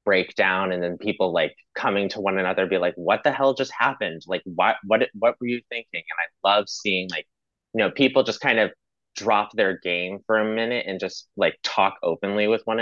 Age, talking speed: 20-39, 225 wpm